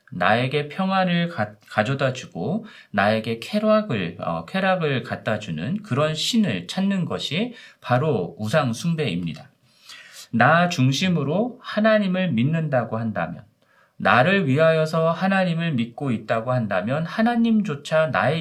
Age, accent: 40-59, native